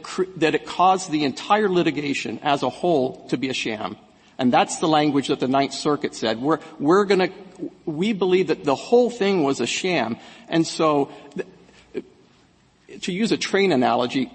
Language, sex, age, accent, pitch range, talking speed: English, male, 50-69, American, 145-190 Hz, 170 wpm